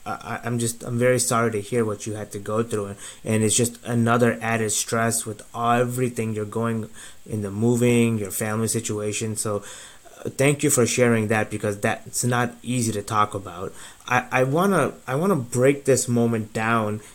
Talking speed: 185 wpm